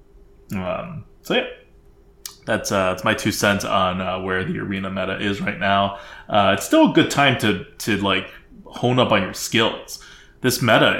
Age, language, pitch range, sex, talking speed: 20-39, English, 95-115 Hz, male, 185 wpm